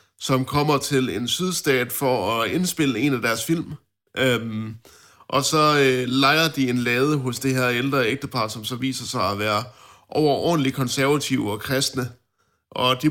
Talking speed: 170 wpm